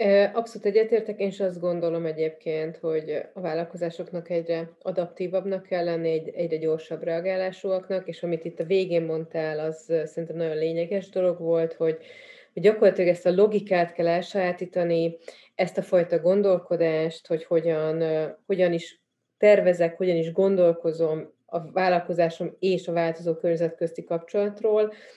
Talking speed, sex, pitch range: 135 wpm, female, 165-195 Hz